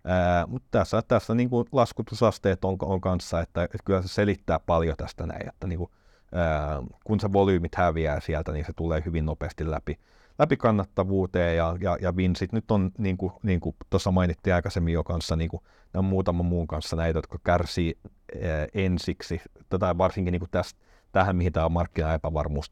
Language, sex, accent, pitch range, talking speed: Finnish, male, native, 80-95 Hz, 180 wpm